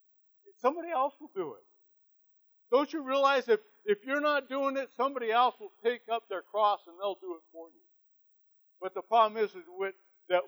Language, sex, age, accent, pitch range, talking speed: English, male, 60-79, American, 190-250 Hz, 195 wpm